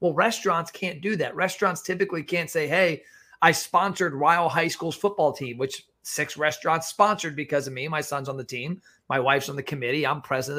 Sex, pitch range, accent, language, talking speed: male, 140-180 Hz, American, English, 210 wpm